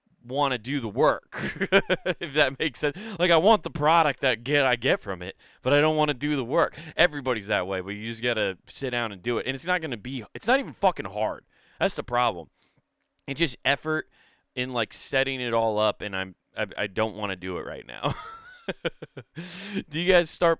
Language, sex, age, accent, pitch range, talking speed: English, male, 20-39, American, 110-150 Hz, 230 wpm